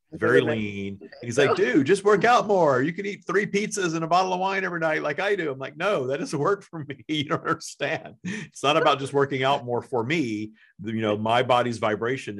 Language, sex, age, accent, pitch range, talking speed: English, male, 40-59, American, 95-125 Hz, 240 wpm